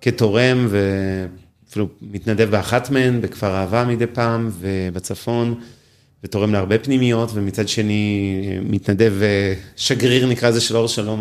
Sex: male